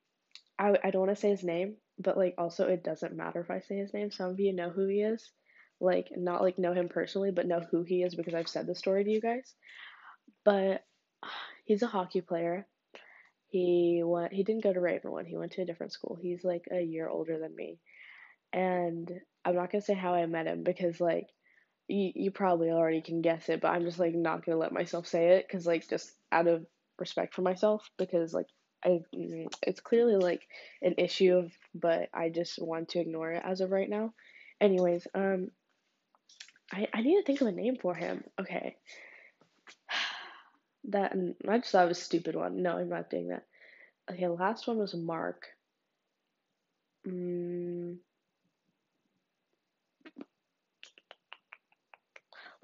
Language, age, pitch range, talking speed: English, 10-29, 170-200 Hz, 180 wpm